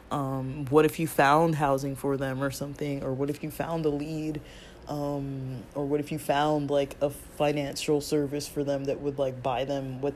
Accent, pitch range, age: American, 135-150 Hz, 20-39